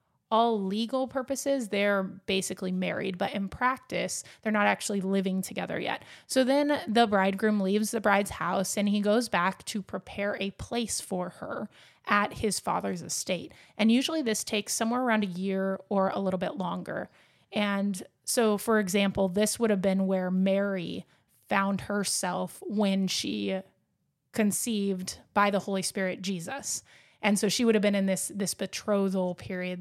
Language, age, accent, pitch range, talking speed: English, 20-39, American, 190-215 Hz, 165 wpm